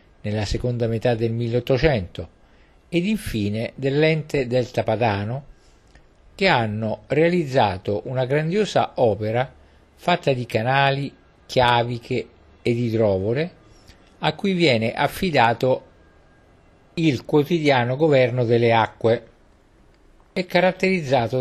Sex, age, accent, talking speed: male, 50-69, native, 95 wpm